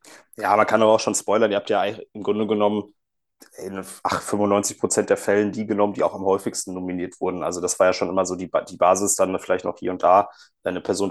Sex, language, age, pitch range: male, German, 20-39, 95-110 Hz